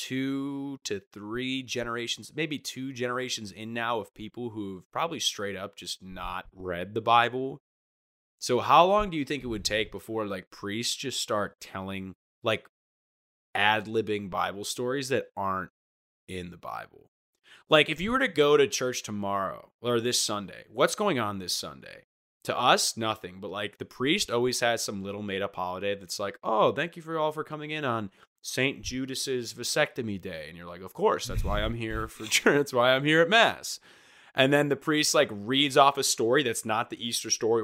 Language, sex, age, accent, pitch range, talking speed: English, male, 20-39, American, 100-135 Hz, 195 wpm